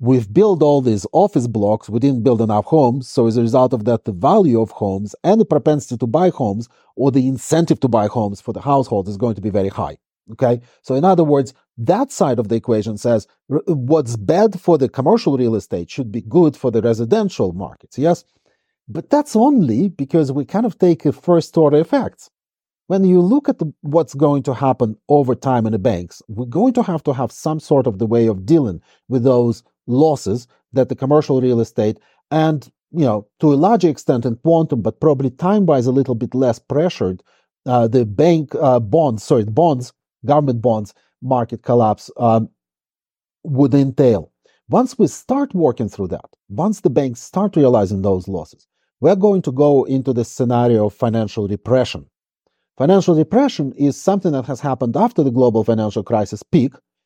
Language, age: English, 40-59